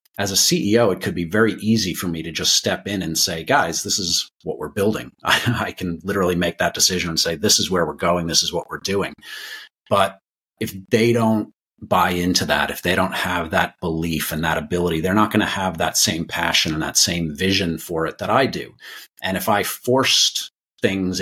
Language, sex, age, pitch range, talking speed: English, male, 40-59, 85-100 Hz, 225 wpm